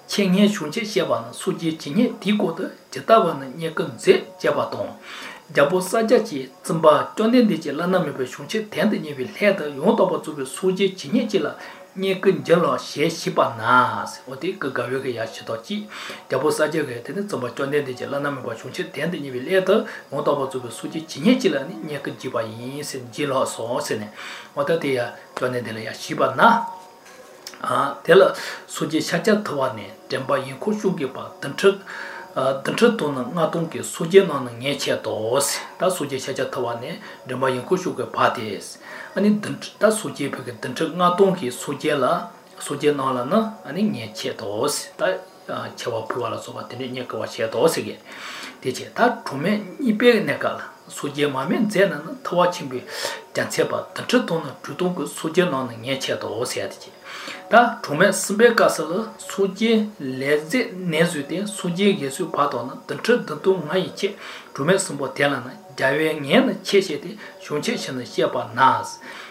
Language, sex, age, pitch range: English, male, 60-79, 140-200 Hz